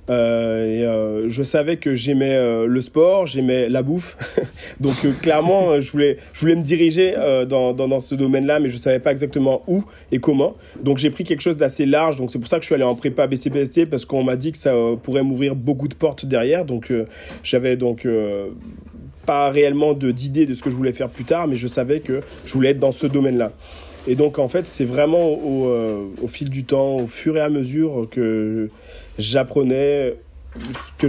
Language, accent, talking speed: French, French, 225 wpm